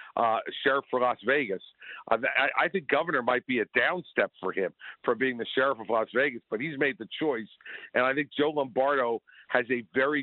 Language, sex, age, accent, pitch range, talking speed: English, male, 50-69, American, 125-145 Hz, 205 wpm